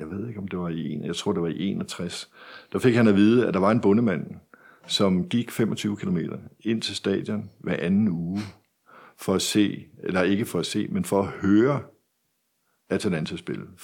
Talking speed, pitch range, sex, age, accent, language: 205 wpm, 90-110 Hz, male, 60-79, native, Danish